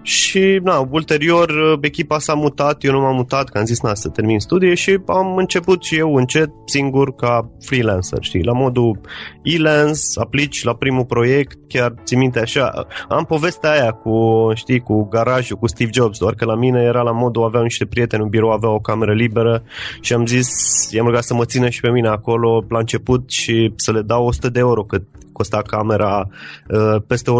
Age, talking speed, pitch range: 20-39, 195 wpm, 115-140 Hz